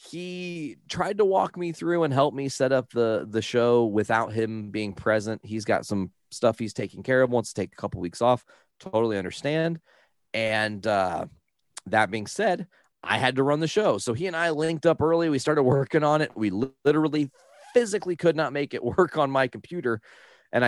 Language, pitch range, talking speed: English, 105-150 Hz, 205 wpm